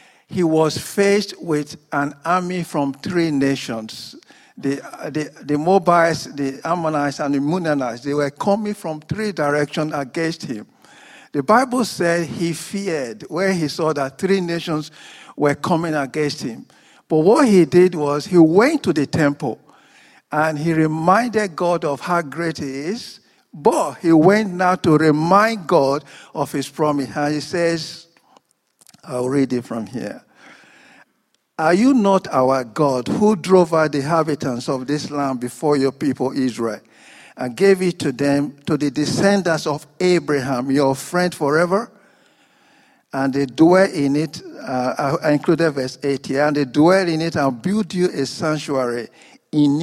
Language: English